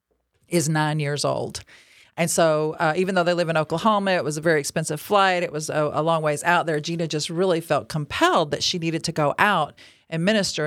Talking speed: 225 wpm